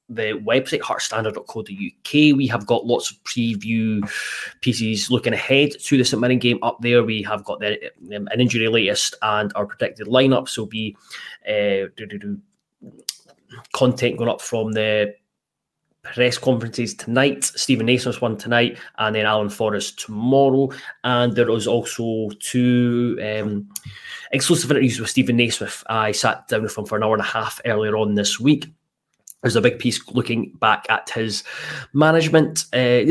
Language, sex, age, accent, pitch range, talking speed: English, male, 20-39, British, 110-130 Hz, 160 wpm